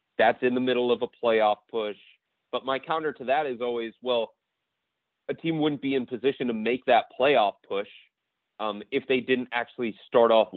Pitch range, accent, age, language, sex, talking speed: 105-135 Hz, American, 30-49, English, male, 195 wpm